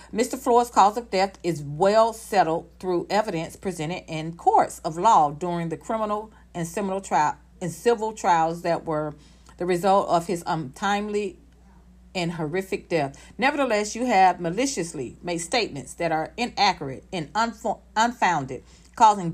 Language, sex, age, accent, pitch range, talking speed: English, female, 40-59, American, 165-225 Hz, 145 wpm